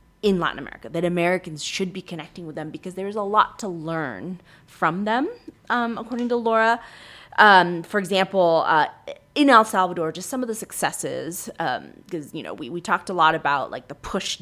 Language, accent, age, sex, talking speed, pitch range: English, American, 20-39, female, 195 wpm, 155-195 Hz